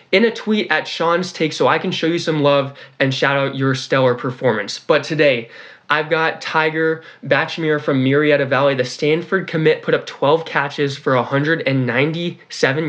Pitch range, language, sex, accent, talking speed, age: 130-160 Hz, English, male, American, 170 wpm, 20-39